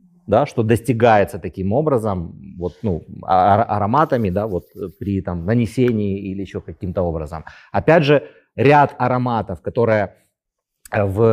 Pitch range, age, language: 95-125 Hz, 30-49, Ukrainian